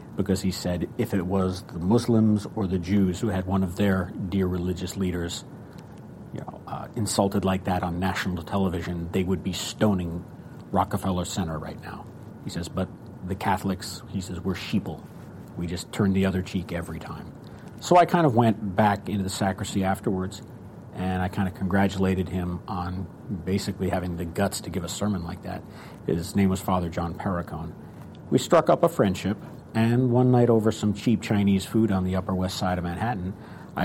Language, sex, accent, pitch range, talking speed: English, male, American, 90-105 Hz, 190 wpm